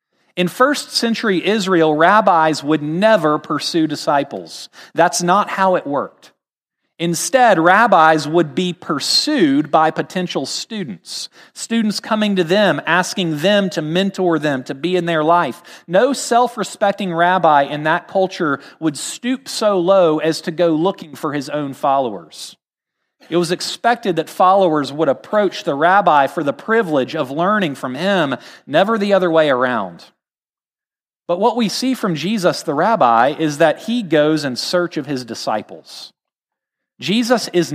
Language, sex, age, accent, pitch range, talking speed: English, male, 40-59, American, 160-215 Hz, 150 wpm